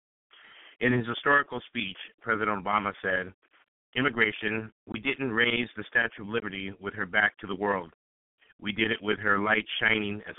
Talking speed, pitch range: 170 wpm, 95-115 Hz